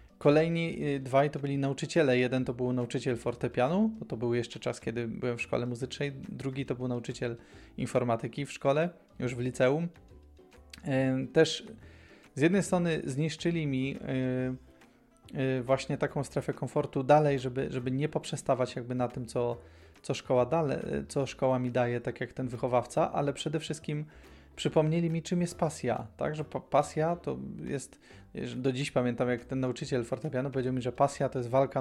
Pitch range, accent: 125-145 Hz, native